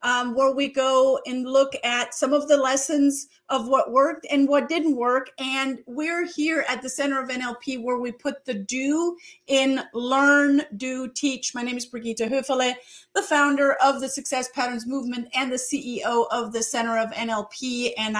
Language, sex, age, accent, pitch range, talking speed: English, female, 40-59, American, 225-275 Hz, 185 wpm